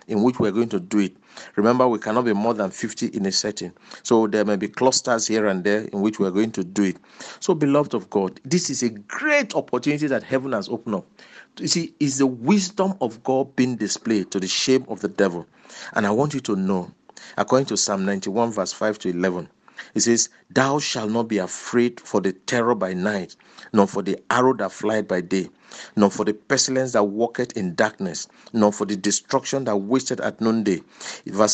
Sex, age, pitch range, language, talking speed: male, 50-69, 105-130 Hz, English, 215 wpm